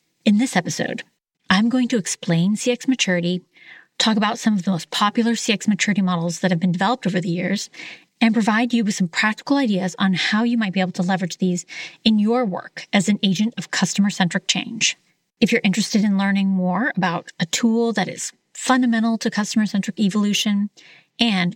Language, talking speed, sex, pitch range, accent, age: English, 185 wpm, female, 180-230 Hz, American, 30-49